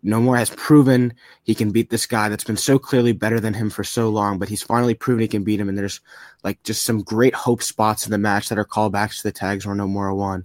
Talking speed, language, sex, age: 265 wpm, English, male, 20-39